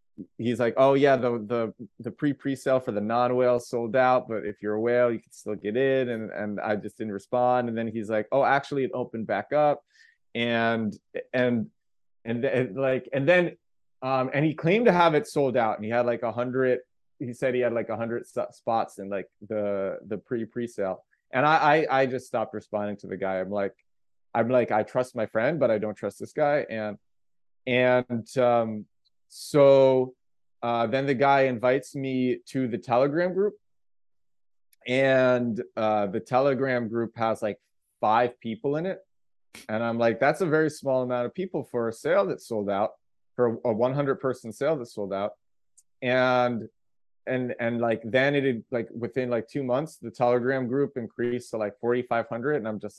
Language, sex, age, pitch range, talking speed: English, male, 20-39, 110-130 Hz, 195 wpm